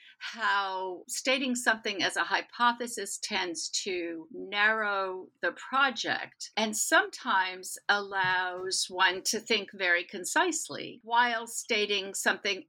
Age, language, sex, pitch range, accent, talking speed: 60-79, English, female, 190-250 Hz, American, 105 wpm